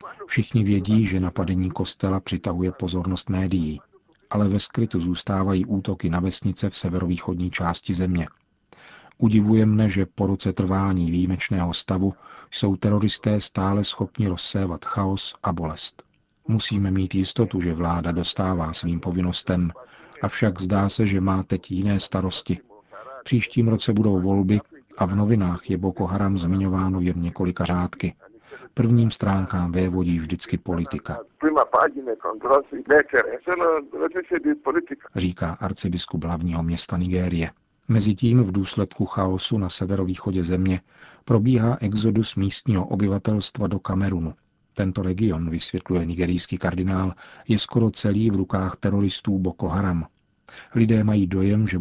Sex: male